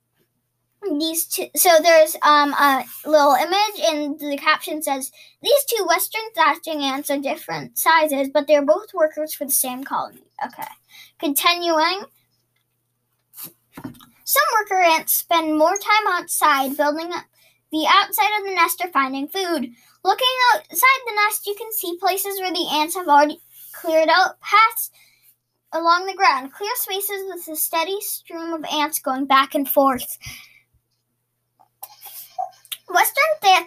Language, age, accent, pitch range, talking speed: English, 10-29, American, 290-375 Hz, 140 wpm